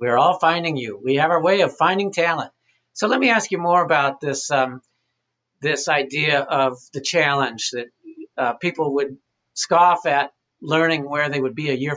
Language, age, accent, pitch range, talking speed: English, 50-69, American, 130-170 Hz, 190 wpm